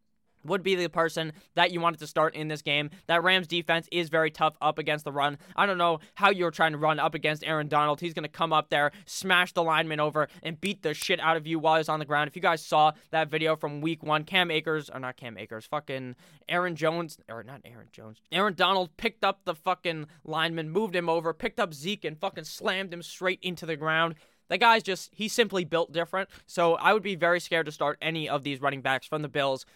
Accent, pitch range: American, 155-185 Hz